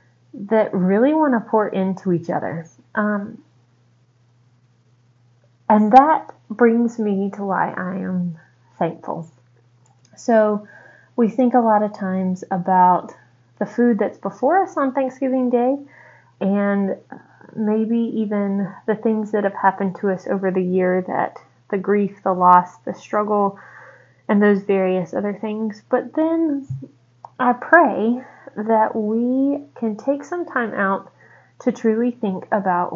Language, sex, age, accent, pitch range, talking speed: English, female, 20-39, American, 185-240 Hz, 135 wpm